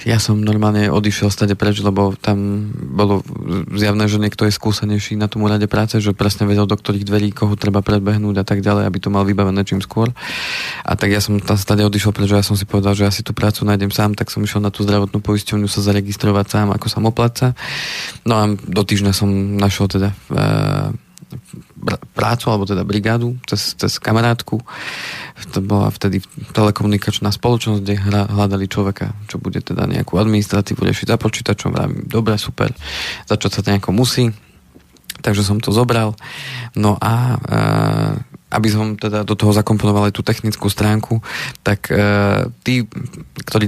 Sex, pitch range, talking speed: male, 100-110 Hz, 175 wpm